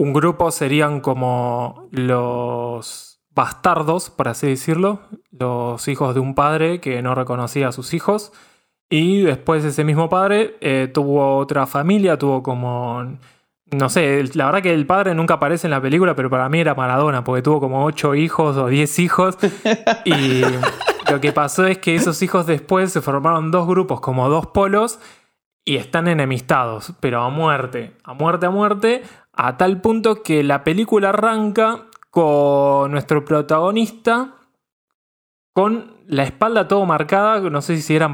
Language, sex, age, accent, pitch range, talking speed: Spanish, male, 20-39, Argentinian, 130-170 Hz, 160 wpm